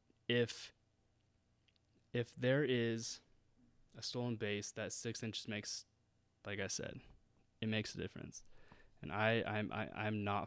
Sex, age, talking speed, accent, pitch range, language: male, 20-39, 140 wpm, American, 110-120 Hz, English